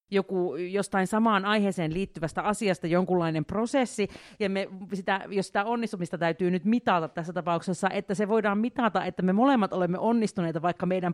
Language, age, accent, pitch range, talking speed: Finnish, 40-59, native, 150-195 Hz, 160 wpm